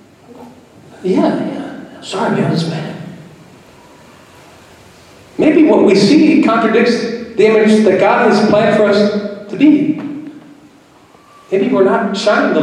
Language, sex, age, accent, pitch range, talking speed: English, male, 40-59, American, 170-215 Hz, 120 wpm